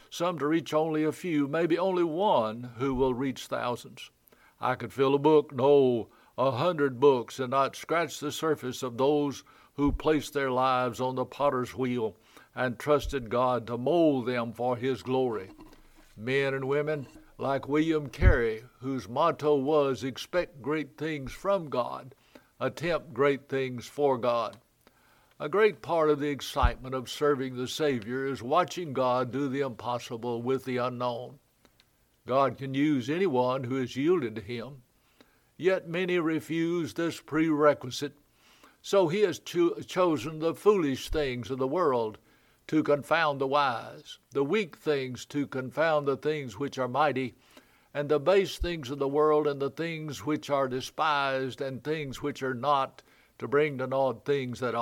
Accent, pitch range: American, 130-155 Hz